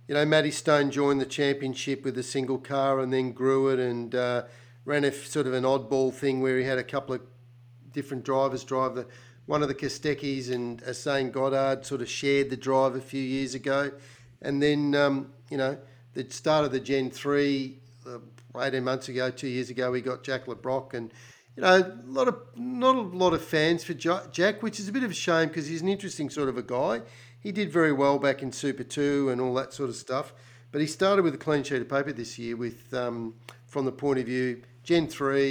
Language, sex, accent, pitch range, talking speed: English, male, Australian, 125-140 Hz, 225 wpm